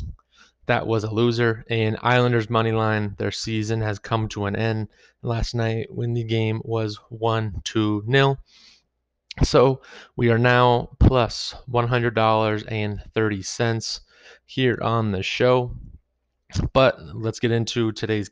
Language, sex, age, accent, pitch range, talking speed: English, male, 20-39, American, 110-125 Hz, 120 wpm